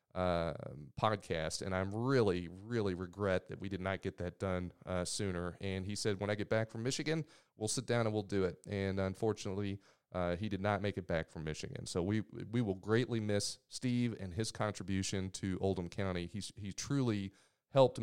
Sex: male